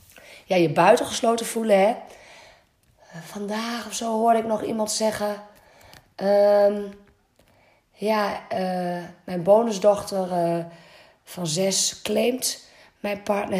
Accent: Dutch